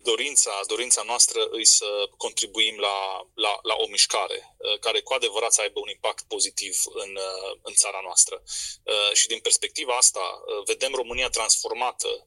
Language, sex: Romanian, male